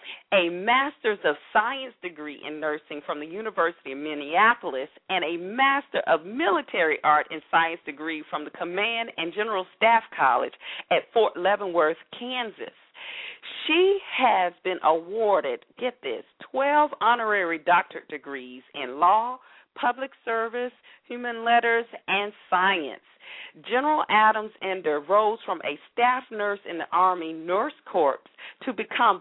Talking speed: 135 wpm